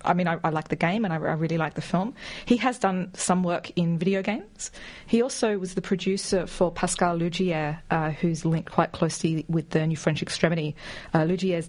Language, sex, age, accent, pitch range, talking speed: English, female, 40-59, Australian, 165-200 Hz, 215 wpm